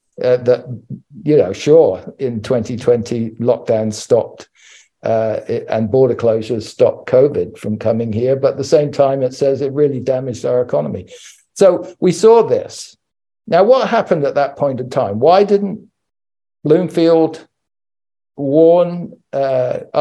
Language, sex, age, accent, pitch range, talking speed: English, male, 50-69, British, 130-160 Hz, 140 wpm